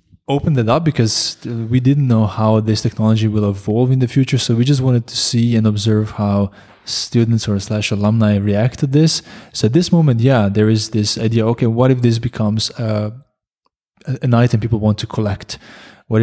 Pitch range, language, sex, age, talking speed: 105-130 Hz, English, male, 20-39, 195 wpm